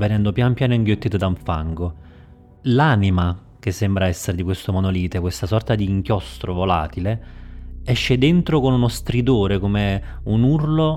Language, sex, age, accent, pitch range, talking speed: Italian, male, 30-49, native, 90-110 Hz, 150 wpm